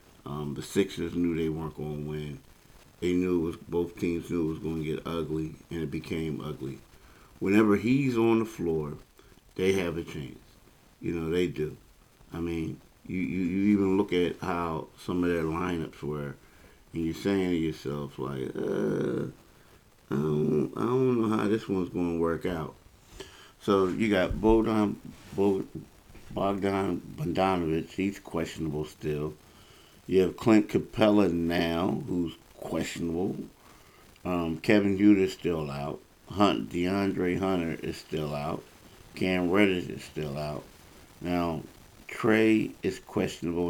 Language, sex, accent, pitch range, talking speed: English, male, American, 80-100 Hz, 150 wpm